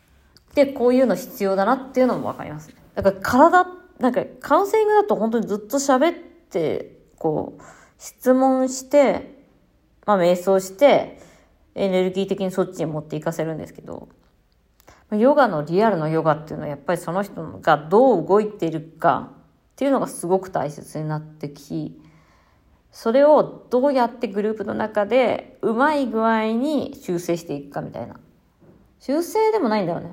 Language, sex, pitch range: Japanese, female, 160-260 Hz